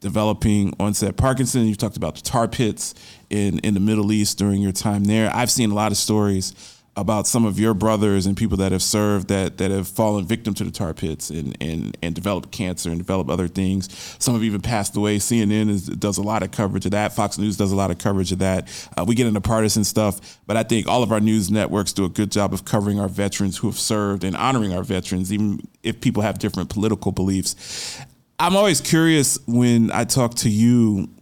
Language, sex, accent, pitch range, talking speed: English, male, American, 100-115 Hz, 230 wpm